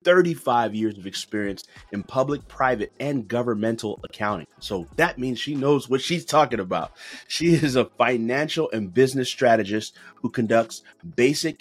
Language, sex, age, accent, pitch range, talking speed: English, male, 30-49, American, 105-130 Hz, 150 wpm